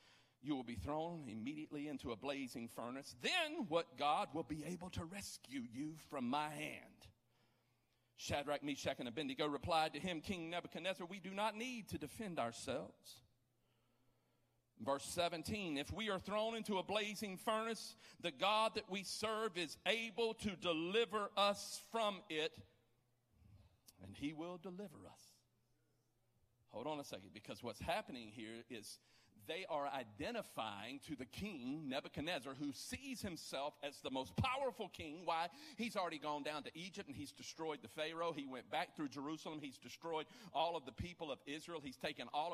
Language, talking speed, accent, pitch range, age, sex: English, 165 wpm, American, 125-185 Hz, 50-69, male